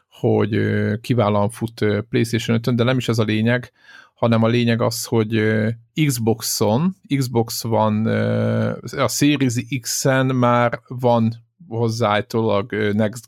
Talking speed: 115 wpm